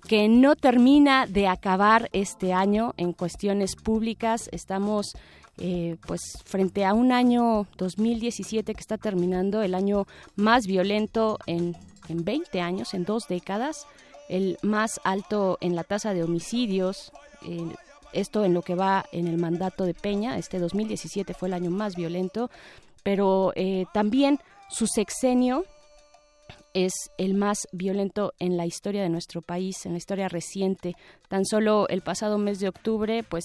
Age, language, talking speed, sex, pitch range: 20-39, Spanish, 150 wpm, female, 180-215 Hz